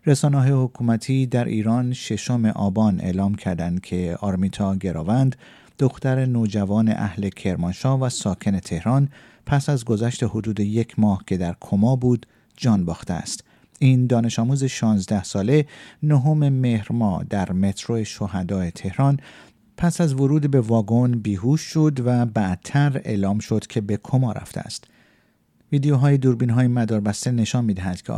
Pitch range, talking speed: 100-130 Hz, 135 wpm